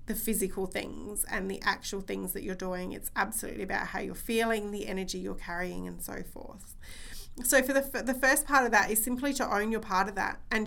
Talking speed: 230 wpm